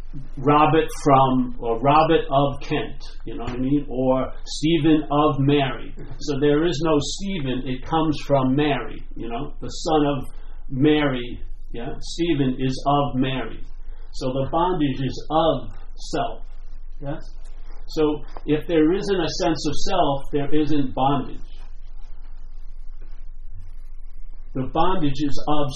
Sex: male